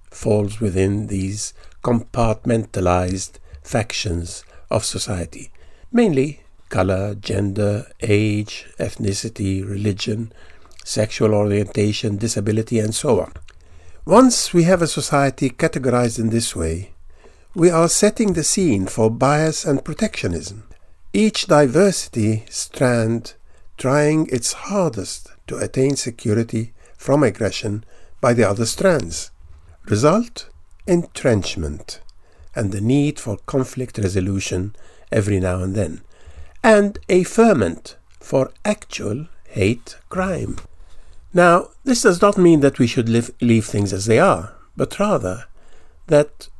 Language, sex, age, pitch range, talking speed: English, male, 50-69, 100-155 Hz, 115 wpm